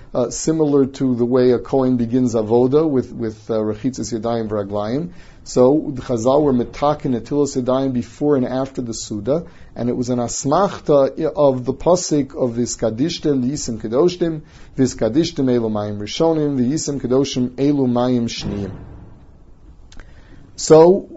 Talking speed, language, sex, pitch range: 135 wpm, English, male, 120-150 Hz